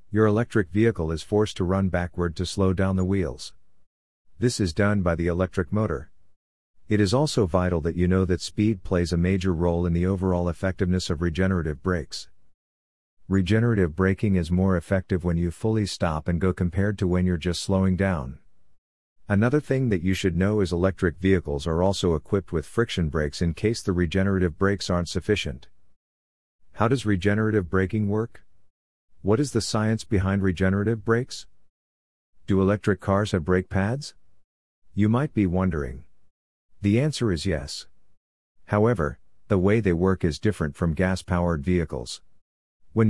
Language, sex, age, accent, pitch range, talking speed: English, male, 50-69, American, 85-105 Hz, 165 wpm